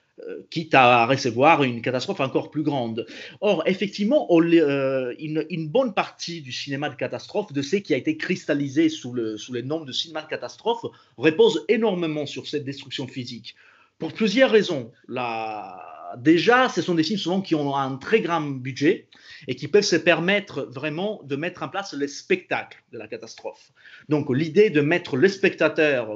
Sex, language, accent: male, French, French